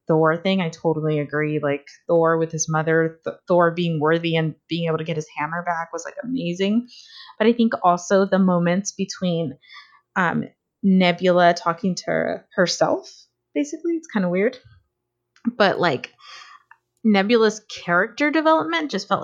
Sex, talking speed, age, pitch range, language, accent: female, 150 wpm, 20-39, 160-200 Hz, English, American